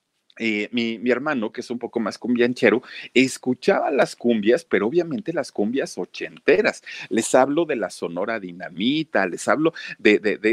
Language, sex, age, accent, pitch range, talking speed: Spanish, male, 40-59, Mexican, 110-160 Hz, 165 wpm